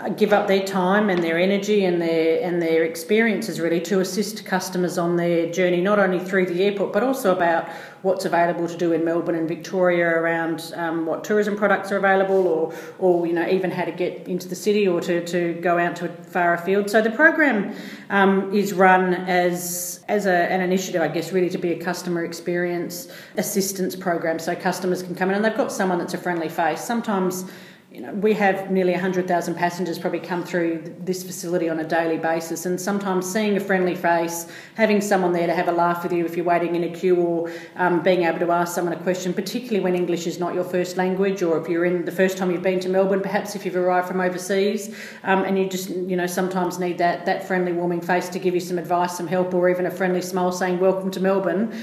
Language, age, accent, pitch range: English, 40-59, Australian, 170-190 Hz